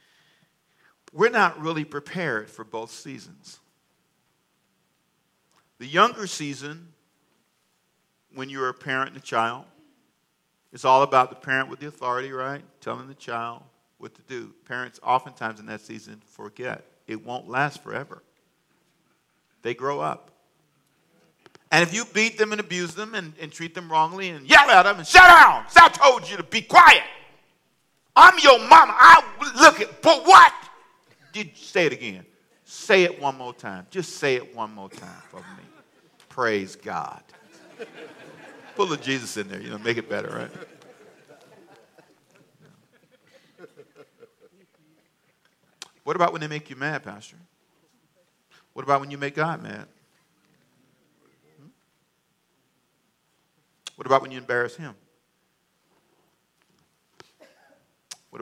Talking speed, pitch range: 140 wpm, 125-205 Hz